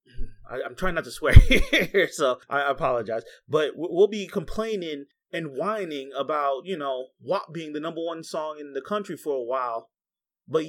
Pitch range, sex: 160-220 Hz, male